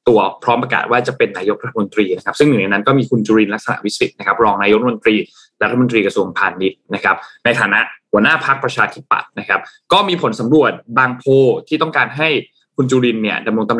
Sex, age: male, 20-39